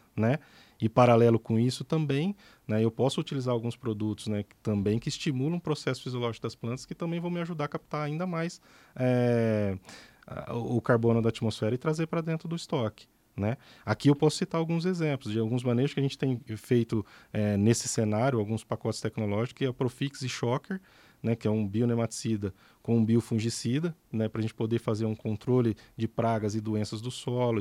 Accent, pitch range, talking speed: Brazilian, 110-140 Hz, 190 wpm